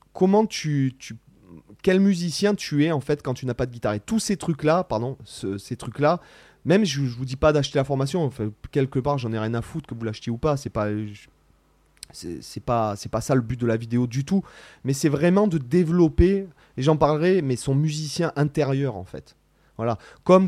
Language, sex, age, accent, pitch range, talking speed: French, male, 30-49, French, 115-155 Hz, 225 wpm